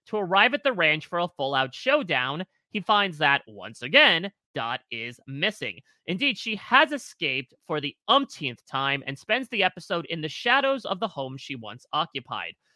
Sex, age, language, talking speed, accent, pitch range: male, 30-49, English, 180 wpm, American, 140-215 Hz